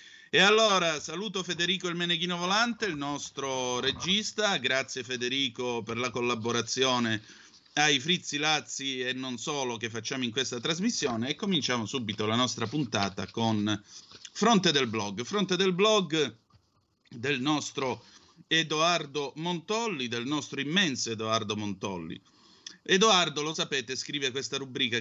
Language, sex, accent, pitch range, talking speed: Italian, male, native, 115-160 Hz, 130 wpm